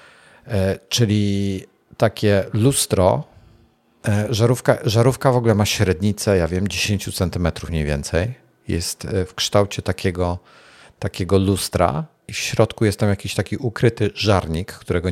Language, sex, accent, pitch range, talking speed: Polish, male, native, 90-110 Hz, 125 wpm